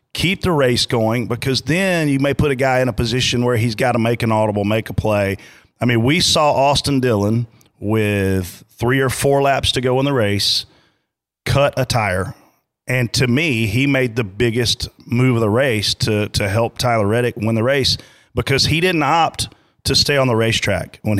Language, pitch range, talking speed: English, 110-135 Hz, 205 wpm